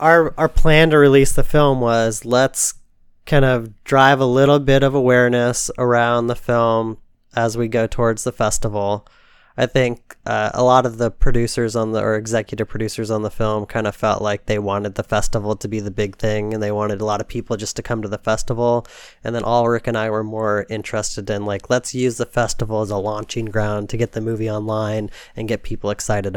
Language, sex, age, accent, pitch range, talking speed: English, male, 20-39, American, 105-125 Hz, 220 wpm